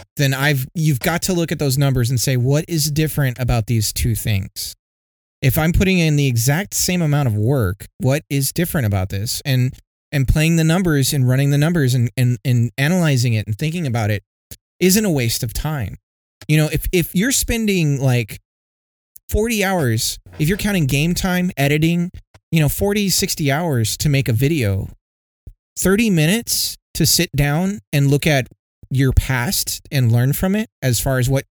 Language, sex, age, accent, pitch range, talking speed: English, male, 30-49, American, 115-150 Hz, 185 wpm